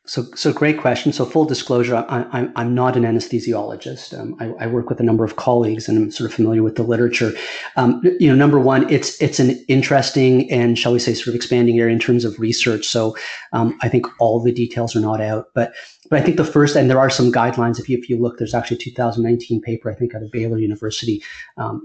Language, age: English, 30-49